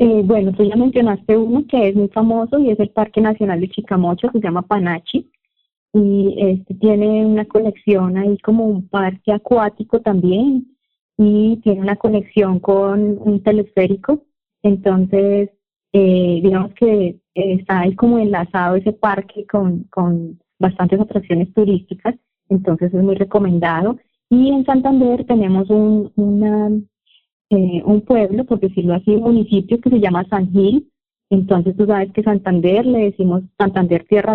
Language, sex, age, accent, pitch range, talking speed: English, female, 20-39, Colombian, 185-215 Hz, 150 wpm